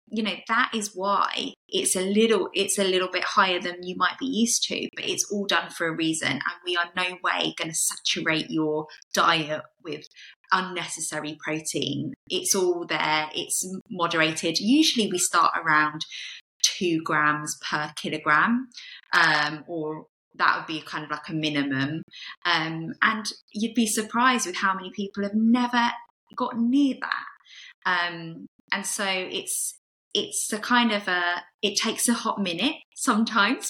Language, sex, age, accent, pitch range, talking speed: English, female, 20-39, British, 170-225 Hz, 160 wpm